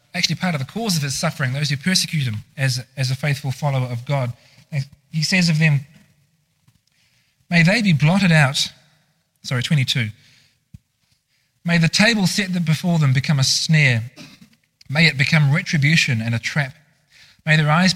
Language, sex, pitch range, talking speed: English, male, 130-160 Hz, 165 wpm